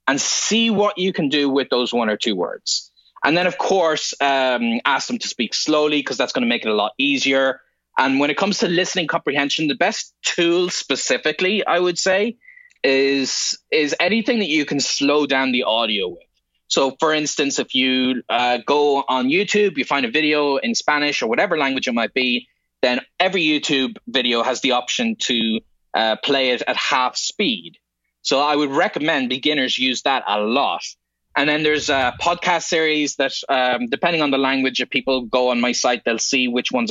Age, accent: 20-39, Irish